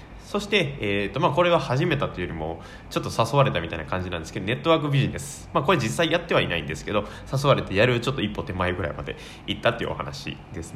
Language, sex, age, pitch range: Japanese, male, 20-39, 100-160 Hz